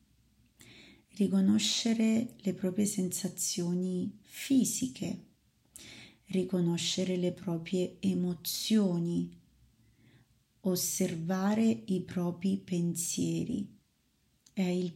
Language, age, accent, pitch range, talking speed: Italian, 30-49, native, 170-195 Hz, 60 wpm